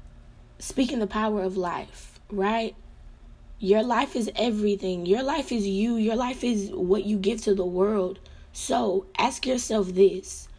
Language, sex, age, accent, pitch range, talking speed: English, female, 20-39, American, 195-245 Hz, 155 wpm